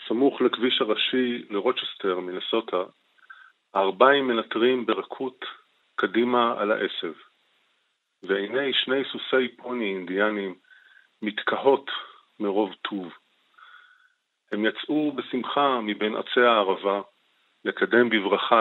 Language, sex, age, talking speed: Hebrew, male, 40-59, 85 wpm